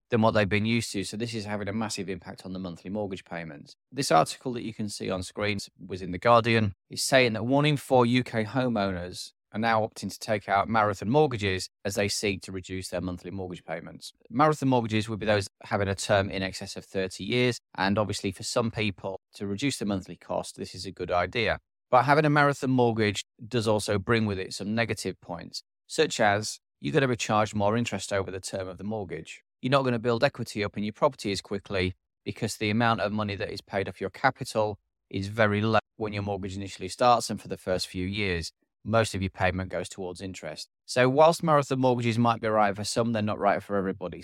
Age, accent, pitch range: 20-39, British, 95-115 Hz